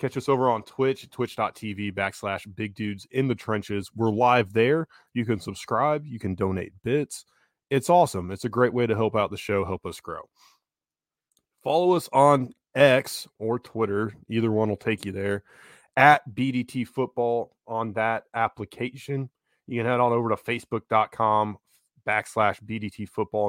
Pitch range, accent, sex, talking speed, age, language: 100-125 Hz, American, male, 165 wpm, 20-39, English